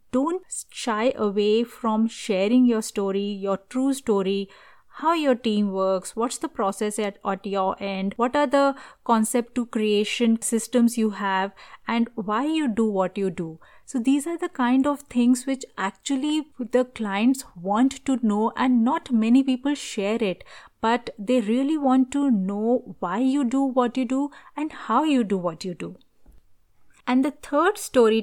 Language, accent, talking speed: English, Indian, 170 wpm